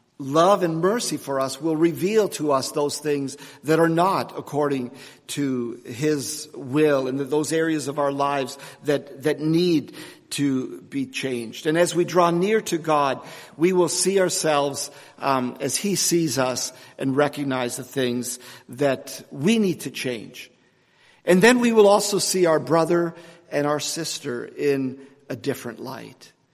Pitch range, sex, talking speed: 135-170 Hz, male, 160 wpm